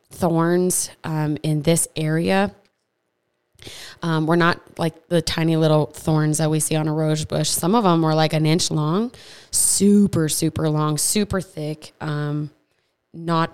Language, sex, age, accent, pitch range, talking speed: English, female, 20-39, American, 155-175 Hz, 155 wpm